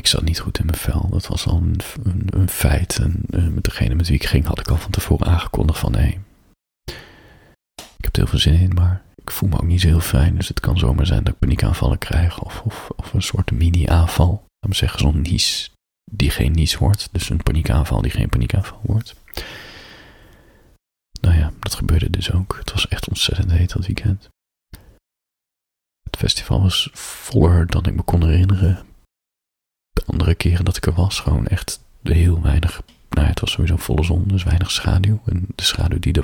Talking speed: 205 wpm